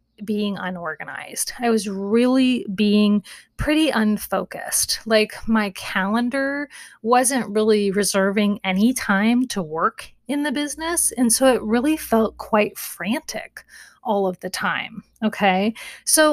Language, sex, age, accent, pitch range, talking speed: English, female, 30-49, American, 200-245 Hz, 125 wpm